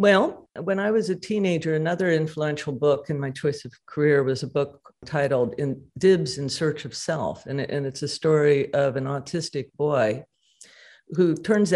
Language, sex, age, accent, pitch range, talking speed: English, female, 50-69, American, 130-160 Hz, 175 wpm